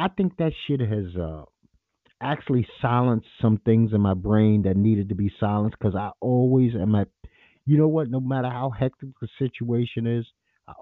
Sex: male